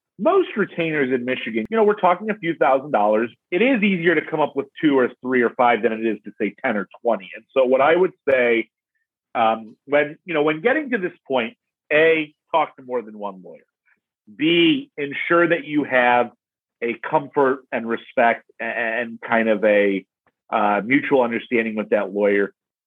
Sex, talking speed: male, 190 wpm